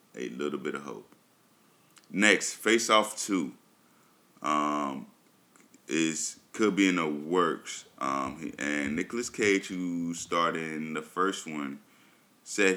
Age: 20-39